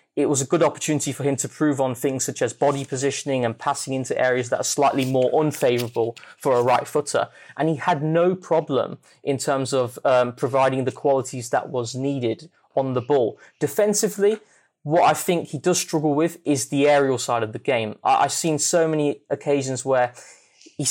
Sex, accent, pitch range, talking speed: male, British, 135-175 Hz, 195 wpm